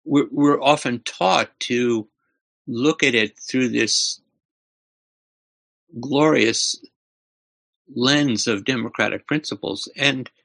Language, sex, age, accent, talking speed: English, male, 60-79, American, 85 wpm